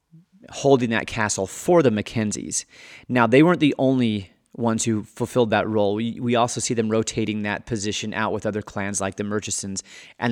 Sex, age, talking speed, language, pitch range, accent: male, 30-49, 185 wpm, English, 105-125 Hz, American